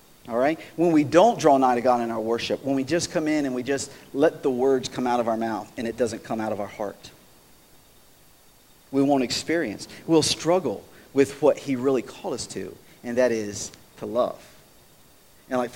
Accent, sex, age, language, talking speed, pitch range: American, male, 40-59, English, 210 wpm, 130-180 Hz